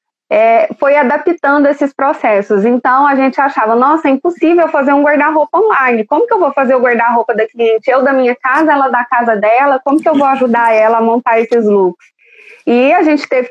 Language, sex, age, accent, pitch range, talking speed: Portuguese, female, 20-39, Brazilian, 235-285 Hz, 205 wpm